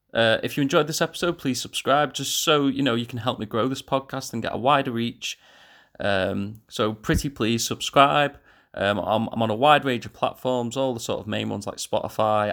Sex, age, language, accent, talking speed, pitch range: male, 30-49, English, British, 220 wpm, 105-130 Hz